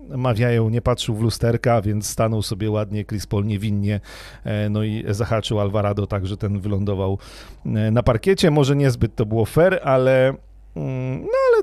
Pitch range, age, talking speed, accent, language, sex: 110-155 Hz, 40-59, 150 wpm, native, Polish, male